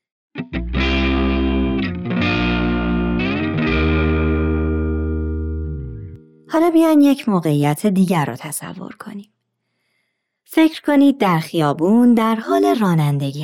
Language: Persian